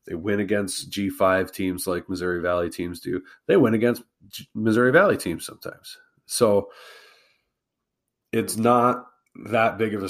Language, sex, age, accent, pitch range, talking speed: English, male, 30-49, American, 90-110 Hz, 145 wpm